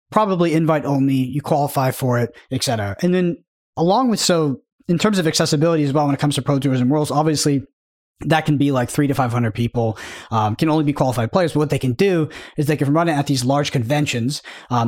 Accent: American